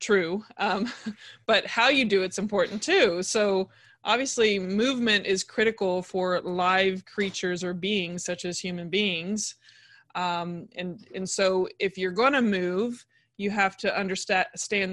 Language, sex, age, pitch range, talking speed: English, female, 20-39, 180-205 Hz, 145 wpm